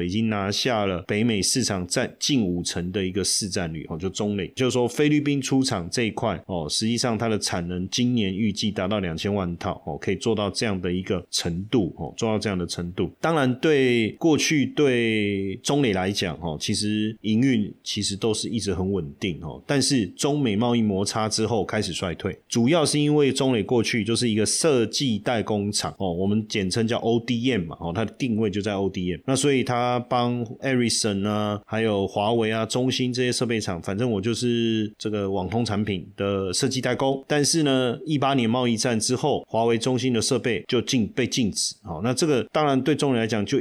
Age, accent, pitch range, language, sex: 30-49, native, 100-125 Hz, Chinese, male